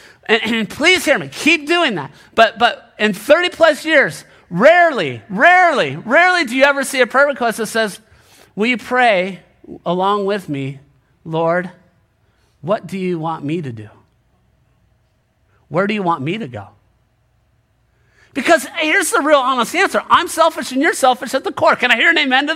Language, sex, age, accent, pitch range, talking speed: English, male, 40-59, American, 170-275 Hz, 175 wpm